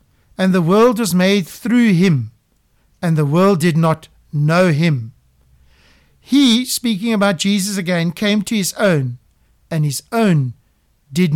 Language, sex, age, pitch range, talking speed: English, male, 60-79, 145-210 Hz, 145 wpm